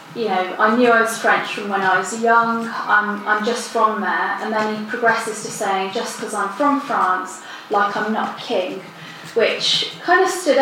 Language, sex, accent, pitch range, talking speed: English, female, British, 205-245 Hz, 205 wpm